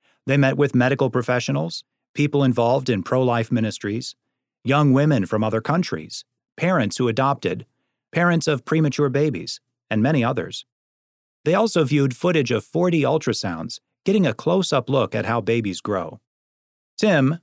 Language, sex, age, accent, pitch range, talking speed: English, male, 40-59, American, 115-150 Hz, 145 wpm